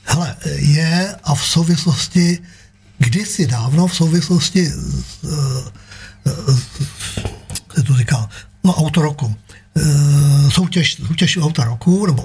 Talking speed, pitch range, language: 90 wpm, 130-175 Hz, Czech